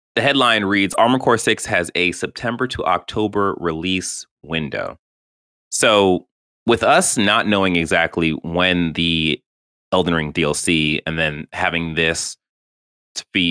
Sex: male